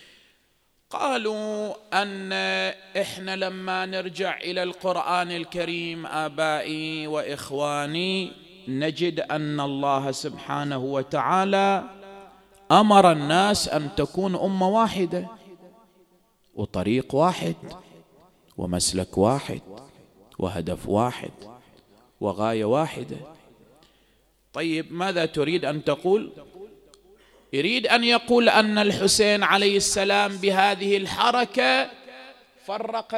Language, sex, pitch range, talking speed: English, male, 145-200 Hz, 80 wpm